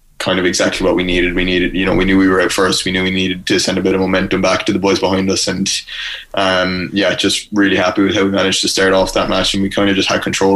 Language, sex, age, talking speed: English, male, 20-39, 305 wpm